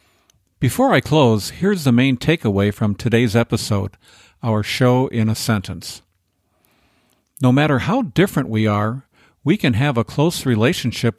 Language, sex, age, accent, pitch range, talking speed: English, male, 50-69, American, 110-130 Hz, 145 wpm